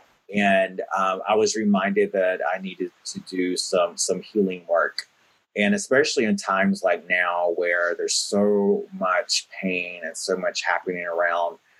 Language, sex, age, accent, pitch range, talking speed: English, male, 30-49, American, 90-145 Hz, 155 wpm